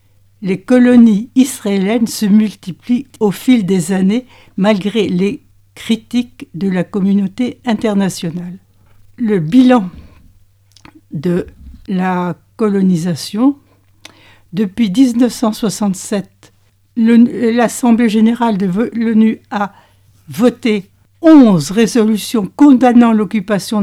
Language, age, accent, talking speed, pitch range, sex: French, 60-79, French, 85 wpm, 175-235 Hz, female